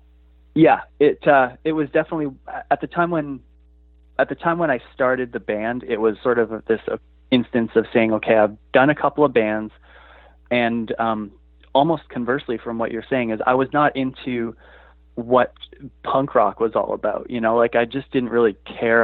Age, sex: 20-39, male